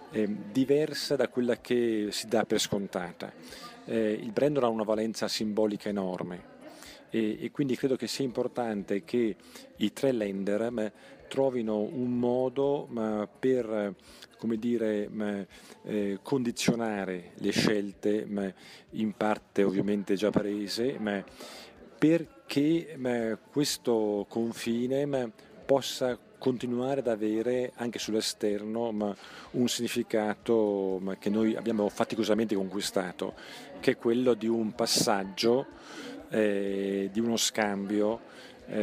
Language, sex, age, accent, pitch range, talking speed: Italian, male, 40-59, native, 105-120 Hz, 115 wpm